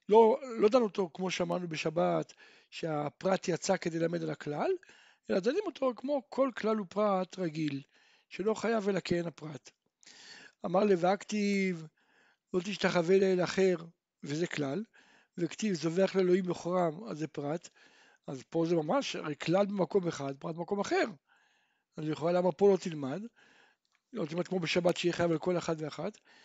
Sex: male